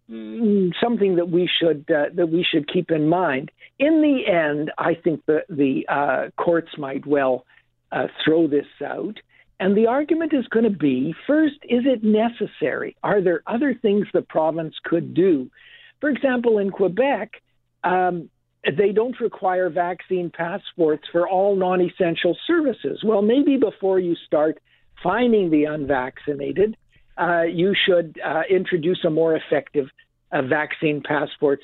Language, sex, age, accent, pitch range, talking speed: English, male, 60-79, American, 160-225 Hz, 150 wpm